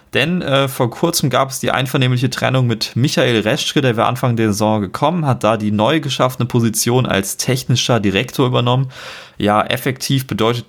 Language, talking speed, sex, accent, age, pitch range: German, 175 wpm, male, German, 20-39, 100-125 Hz